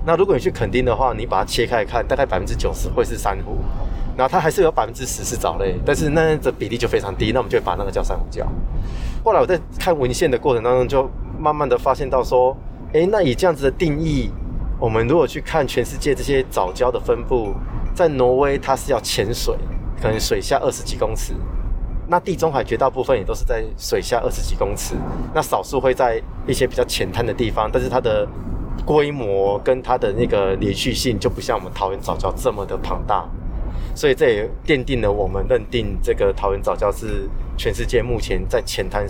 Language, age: Chinese, 20-39